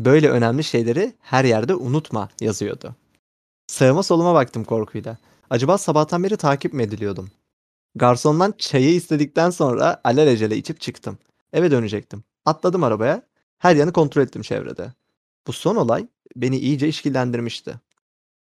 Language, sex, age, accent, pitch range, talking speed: Turkish, male, 30-49, native, 115-155 Hz, 125 wpm